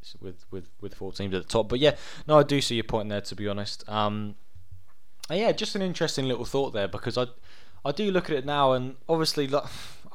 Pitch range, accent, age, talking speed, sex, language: 100-125 Hz, British, 20-39, 230 wpm, male, English